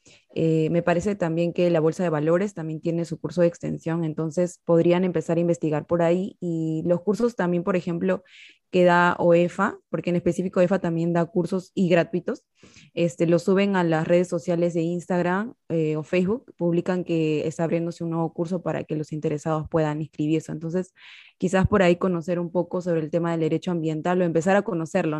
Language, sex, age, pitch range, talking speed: Spanish, female, 20-39, 165-185 Hz, 195 wpm